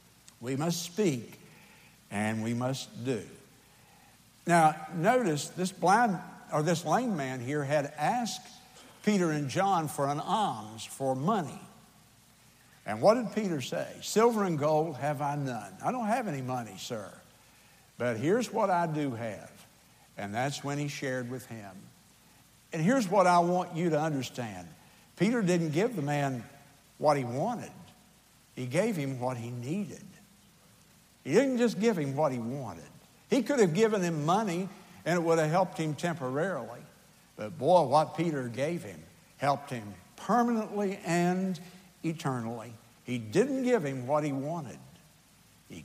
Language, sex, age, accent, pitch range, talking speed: English, male, 60-79, American, 125-180 Hz, 155 wpm